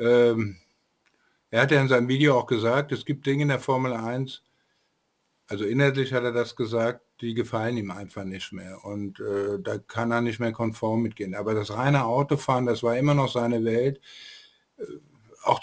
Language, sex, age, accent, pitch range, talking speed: German, male, 50-69, German, 115-135 Hz, 185 wpm